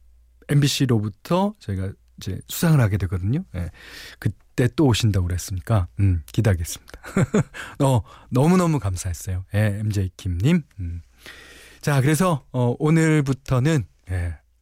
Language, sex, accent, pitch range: Korean, male, native, 95-150 Hz